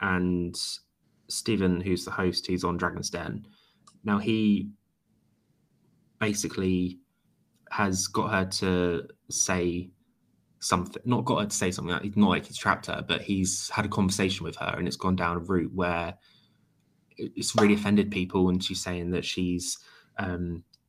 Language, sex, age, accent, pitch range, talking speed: English, male, 20-39, British, 90-105 Hz, 155 wpm